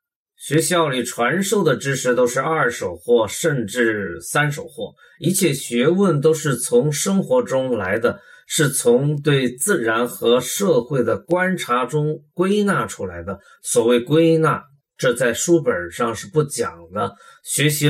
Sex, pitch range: male, 120-165 Hz